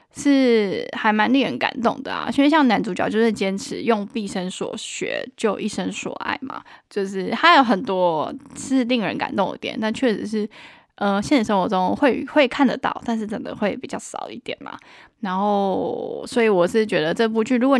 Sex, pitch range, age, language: female, 210-270 Hz, 10-29, Chinese